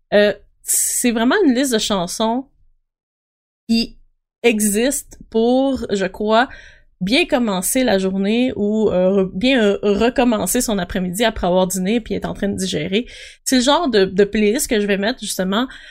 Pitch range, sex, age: 190-245 Hz, female, 20-39